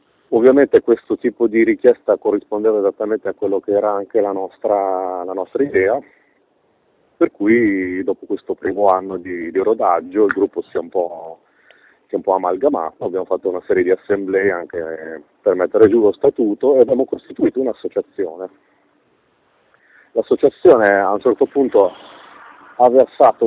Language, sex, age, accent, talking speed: Italian, male, 30-49, native, 155 wpm